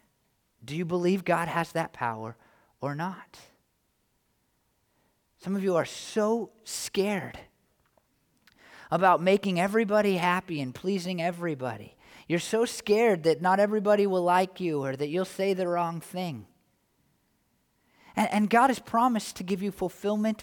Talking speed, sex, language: 140 wpm, male, English